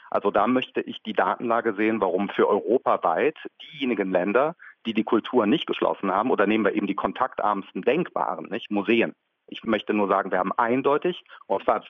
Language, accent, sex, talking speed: German, German, male, 175 wpm